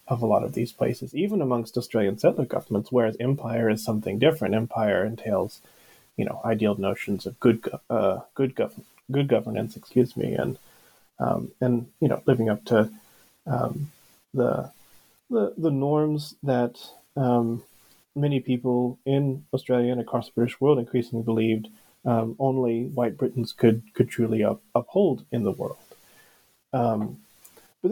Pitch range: 115-140 Hz